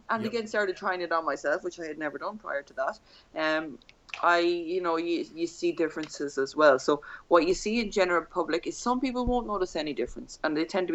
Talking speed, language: 235 wpm, English